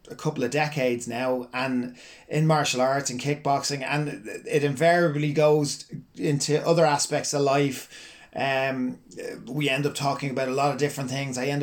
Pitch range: 140-180 Hz